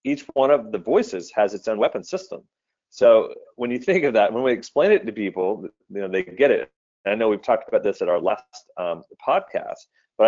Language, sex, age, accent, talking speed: English, male, 30-49, American, 235 wpm